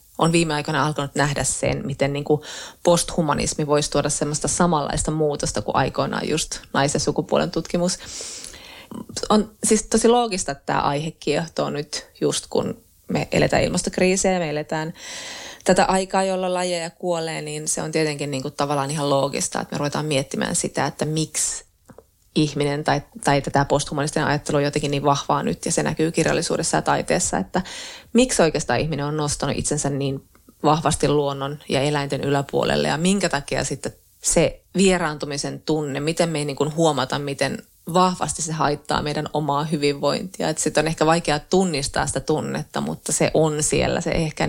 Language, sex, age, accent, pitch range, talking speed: Finnish, female, 20-39, native, 145-165 Hz, 150 wpm